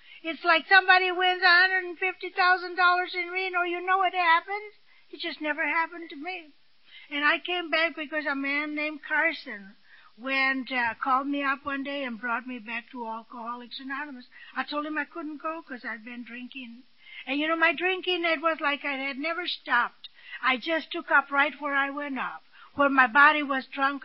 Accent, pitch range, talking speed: American, 235-315 Hz, 185 wpm